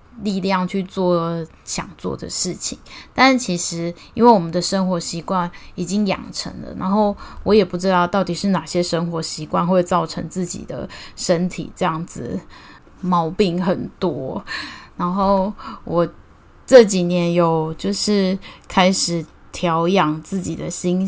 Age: 10-29